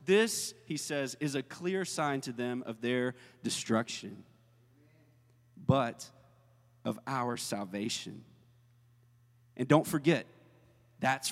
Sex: male